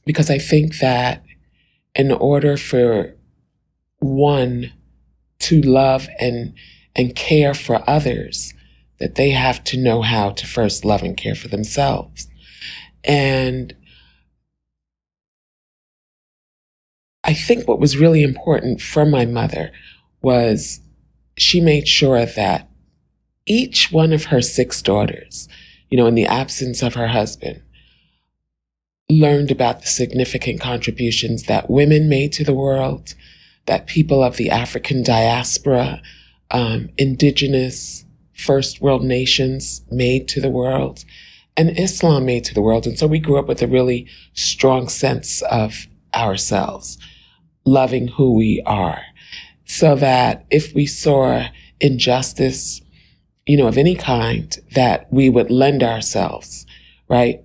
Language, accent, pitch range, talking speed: English, American, 110-140 Hz, 125 wpm